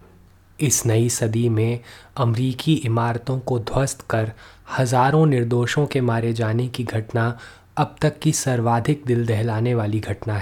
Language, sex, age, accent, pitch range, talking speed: Hindi, male, 20-39, native, 110-125 Hz, 140 wpm